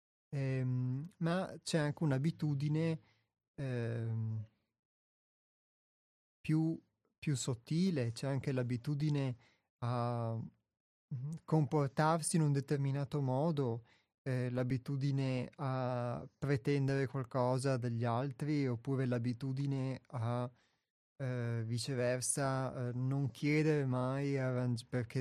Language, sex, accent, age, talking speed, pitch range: Italian, male, native, 30-49, 85 wpm, 125-150 Hz